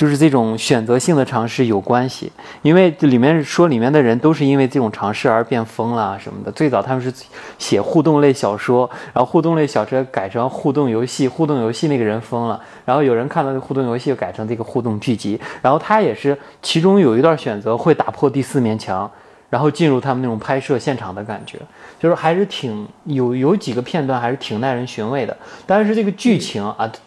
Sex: male